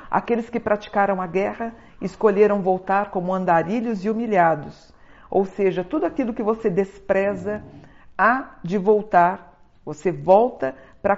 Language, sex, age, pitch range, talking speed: Portuguese, female, 50-69, 170-205 Hz, 130 wpm